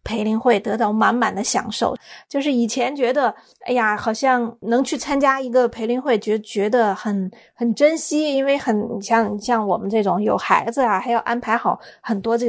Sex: female